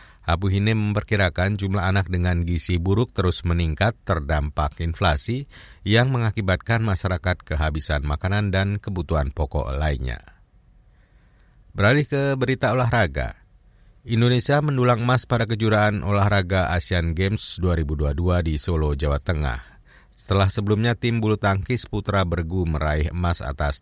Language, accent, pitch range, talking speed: Indonesian, native, 80-110 Hz, 120 wpm